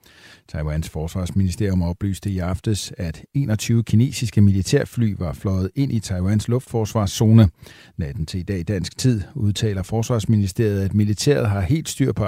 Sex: male